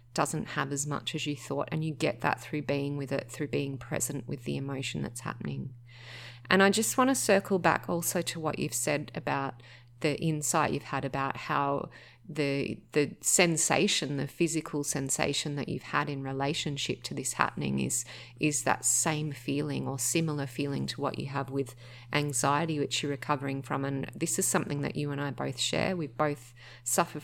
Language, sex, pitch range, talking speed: English, female, 135-180 Hz, 190 wpm